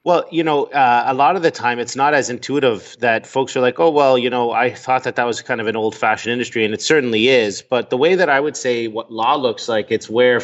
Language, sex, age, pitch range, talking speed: English, male, 30-49, 115-130 Hz, 280 wpm